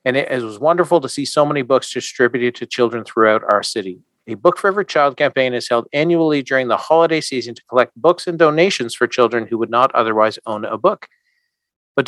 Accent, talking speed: American, 215 wpm